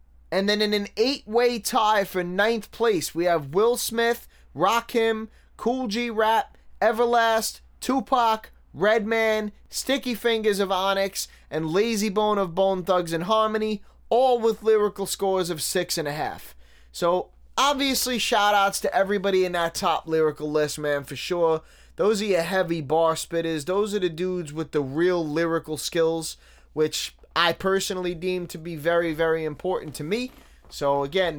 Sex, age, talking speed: male, 20-39, 155 wpm